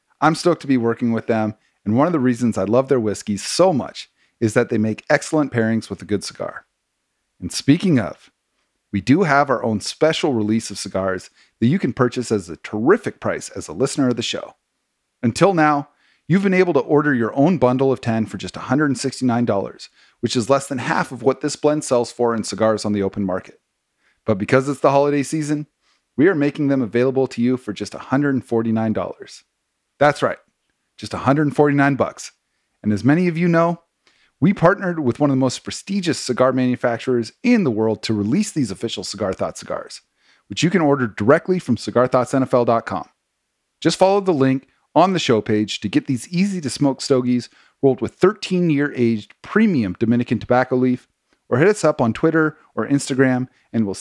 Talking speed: 190 wpm